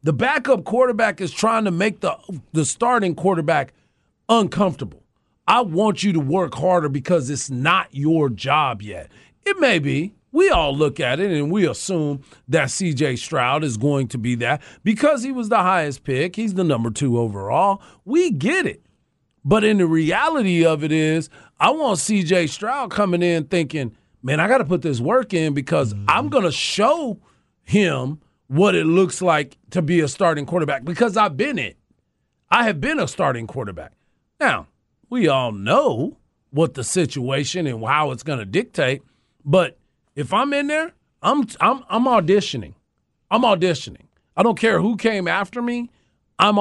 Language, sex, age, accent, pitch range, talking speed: English, male, 40-59, American, 140-195 Hz, 175 wpm